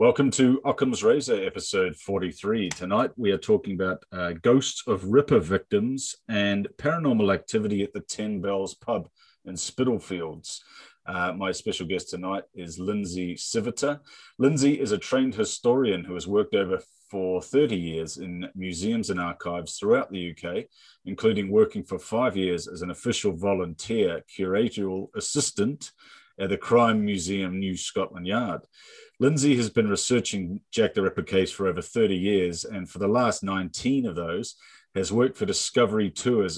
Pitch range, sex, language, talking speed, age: 95-145 Hz, male, English, 155 wpm, 30-49